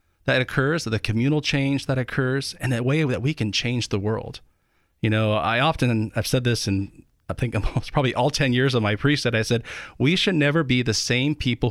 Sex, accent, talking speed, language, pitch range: male, American, 220 wpm, English, 105-140 Hz